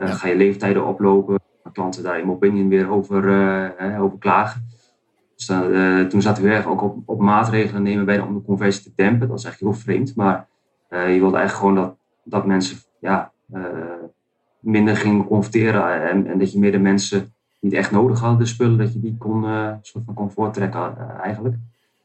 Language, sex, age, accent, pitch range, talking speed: Dutch, male, 30-49, Dutch, 95-110 Hz, 190 wpm